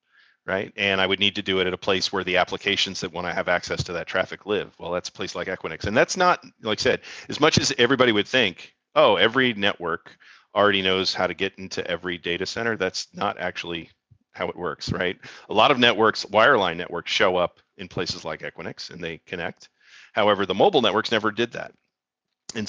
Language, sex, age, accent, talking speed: English, male, 40-59, American, 220 wpm